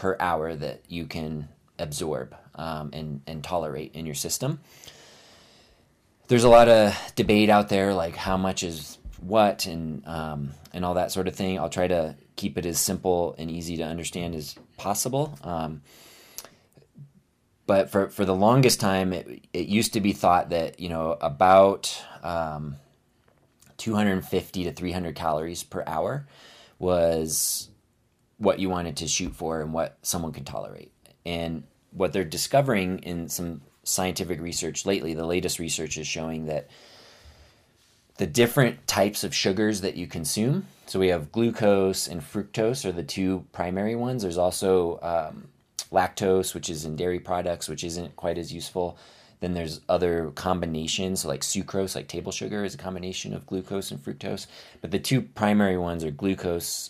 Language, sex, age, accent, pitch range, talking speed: English, male, 20-39, American, 80-95 Hz, 160 wpm